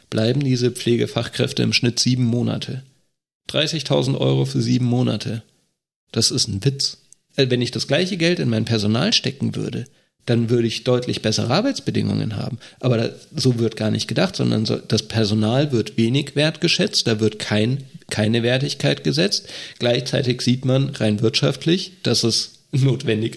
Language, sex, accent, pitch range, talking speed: German, male, German, 110-140 Hz, 150 wpm